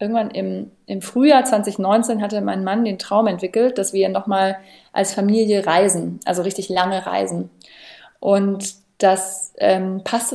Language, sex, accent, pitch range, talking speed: German, female, German, 190-220 Hz, 145 wpm